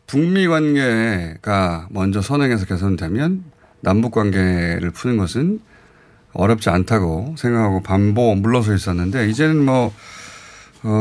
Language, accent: Korean, native